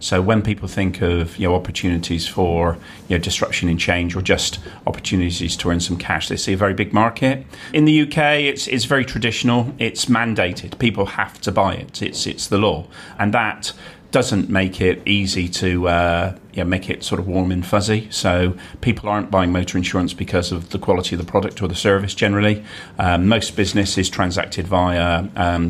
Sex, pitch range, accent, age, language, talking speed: male, 90-110 Hz, British, 40-59, English, 195 wpm